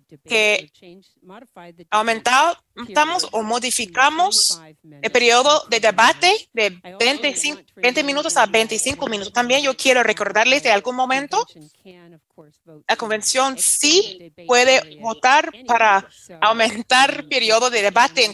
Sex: female